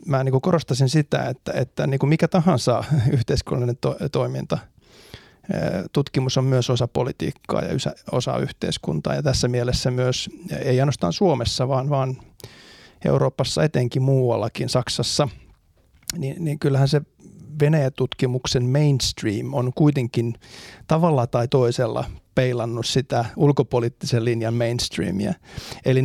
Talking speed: 120 wpm